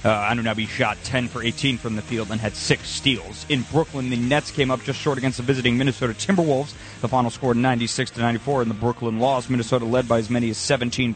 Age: 30-49